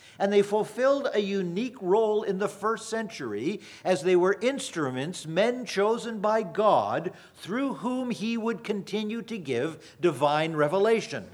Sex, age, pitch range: male, 50-69, 175-230 Hz